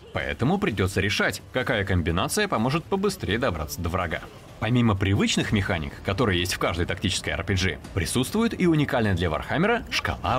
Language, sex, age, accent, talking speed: Russian, male, 20-39, native, 145 wpm